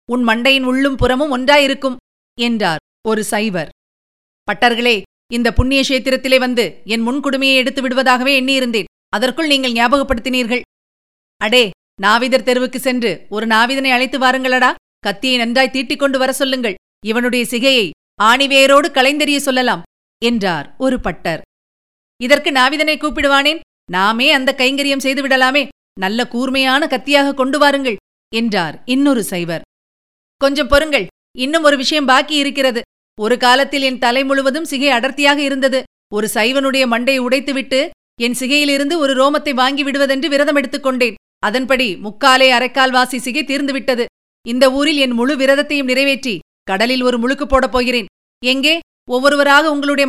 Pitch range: 230-275 Hz